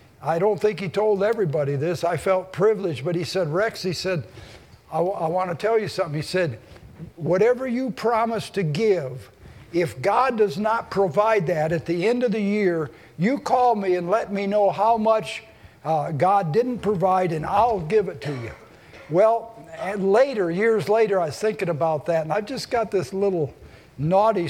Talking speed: 185 wpm